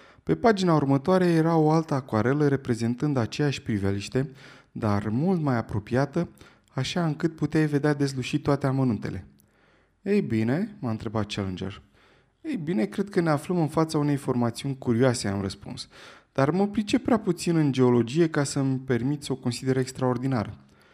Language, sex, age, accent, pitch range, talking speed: Romanian, male, 20-39, native, 120-165 Hz, 150 wpm